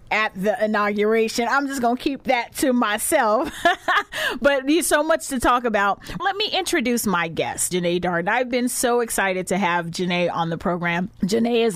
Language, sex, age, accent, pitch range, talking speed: English, female, 30-49, American, 175-225 Hz, 190 wpm